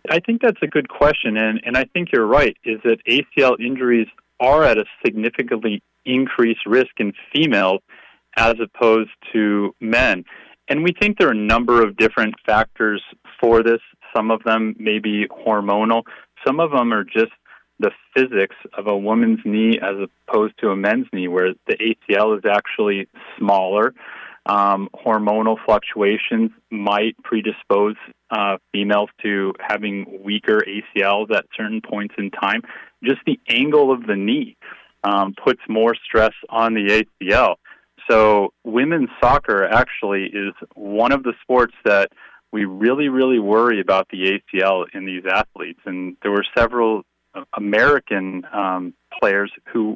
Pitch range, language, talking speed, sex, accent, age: 100-115 Hz, English, 150 wpm, male, American, 30-49